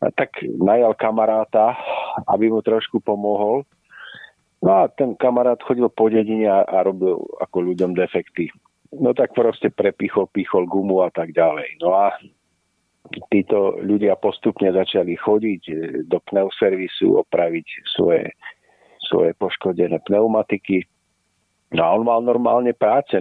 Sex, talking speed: male, 125 wpm